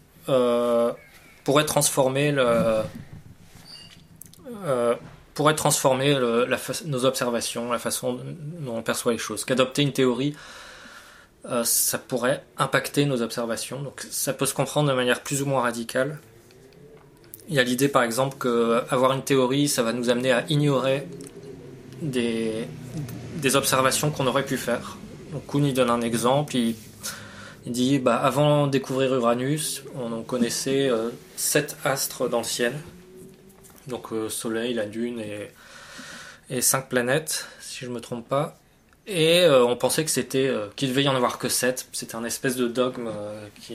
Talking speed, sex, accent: 165 wpm, male, French